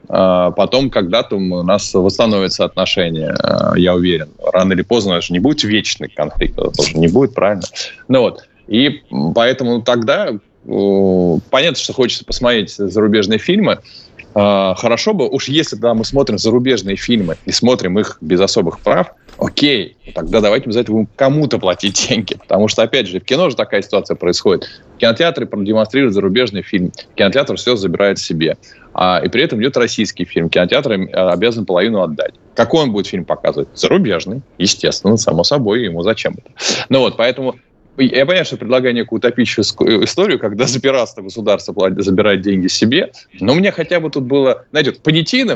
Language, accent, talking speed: Russian, native, 160 wpm